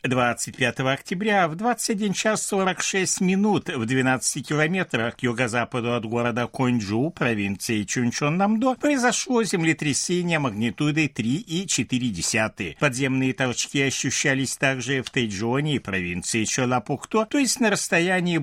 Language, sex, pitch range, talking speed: Russian, male, 115-160 Hz, 110 wpm